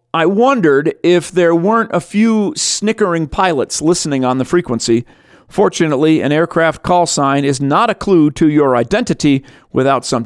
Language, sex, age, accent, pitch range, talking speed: English, male, 40-59, American, 140-185 Hz, 160 wpm